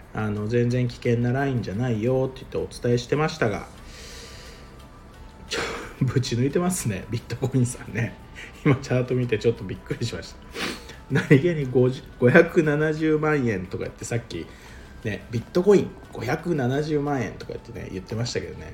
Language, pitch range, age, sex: Japanese, 110-145 Hz, 50-69, male